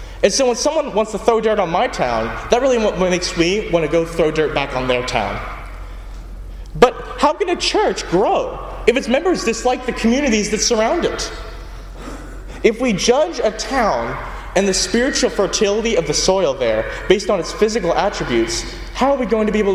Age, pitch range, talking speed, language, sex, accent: 20-39, 170-245 Hz, 195 wpm, English, male, American